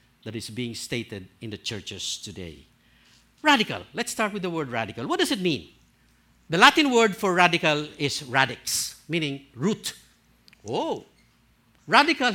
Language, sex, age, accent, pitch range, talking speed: English, male, 60-79, Filipino, 150-240 Hz, 145 wpm